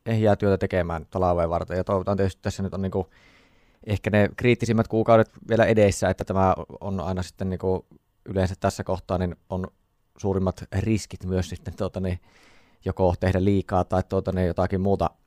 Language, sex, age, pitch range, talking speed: Finnish, male, 20-39, 90-100 Hz, 170 wpm